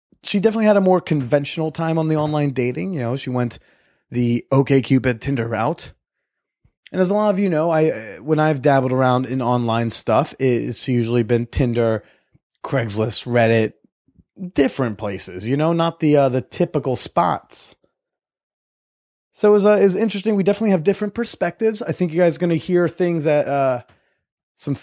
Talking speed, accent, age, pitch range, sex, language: 180 wpm, American, 20-39, 125-185 Hz, male, English